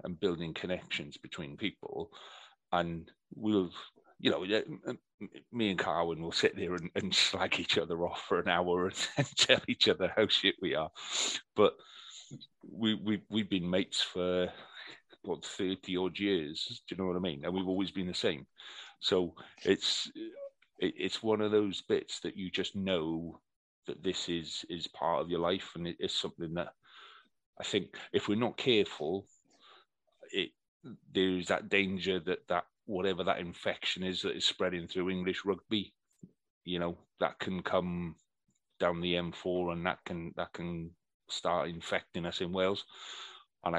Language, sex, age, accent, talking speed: English, male, 30-49, British, 165 wpm